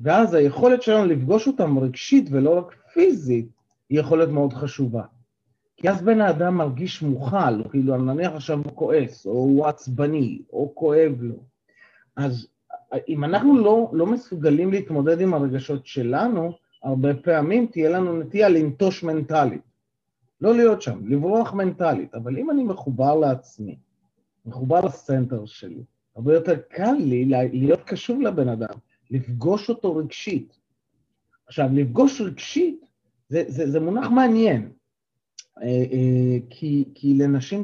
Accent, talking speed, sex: native, 135 wpm, male